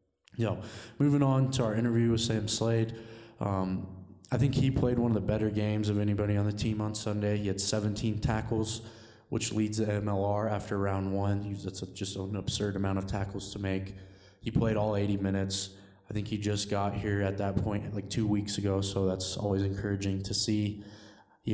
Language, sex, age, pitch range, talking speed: English, male, 20-39, 100-110 Hz, 195 wpm